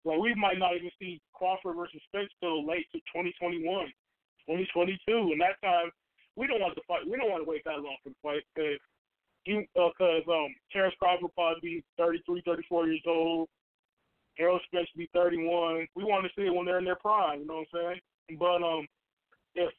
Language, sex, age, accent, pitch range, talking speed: English, male, 20-39, American, 165-190 Hz, 205 wpm